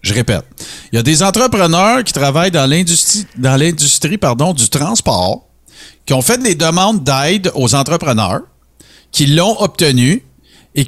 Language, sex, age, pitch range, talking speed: French, male, 50-69, 130-190 Hz, 155 wpm